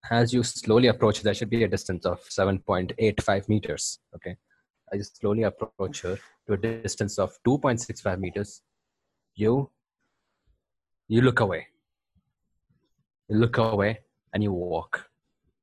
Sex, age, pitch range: male, 20-39, 100-120 Hz